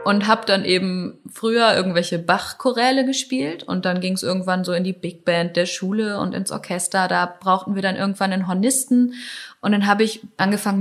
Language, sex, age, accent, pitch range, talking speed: German, female, 20-39, German, 185-250 Hz, 195 wpm